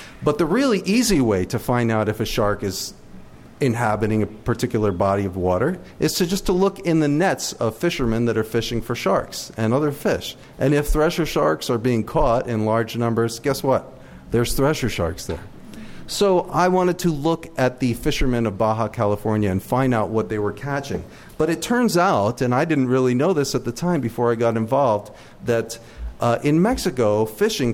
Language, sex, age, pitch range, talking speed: English, male, 40-59, 110-145 Hz, 200 wpm